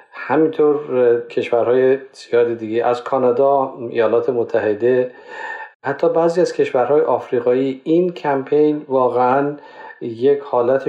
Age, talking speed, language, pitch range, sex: 50-69, 100 wpm, Persian, 120-165 Hz, male